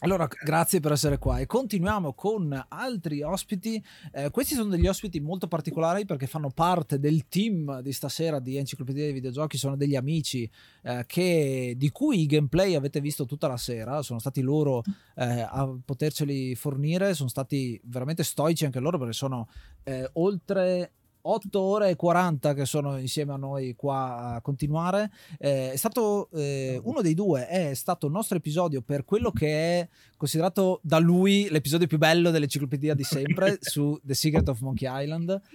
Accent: native